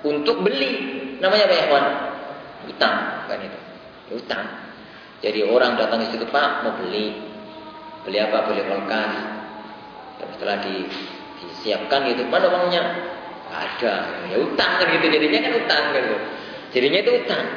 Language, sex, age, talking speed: Malay, male, 20-39, 135 wpm